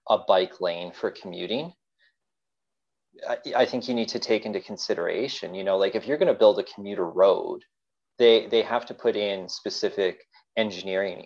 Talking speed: 175 wpm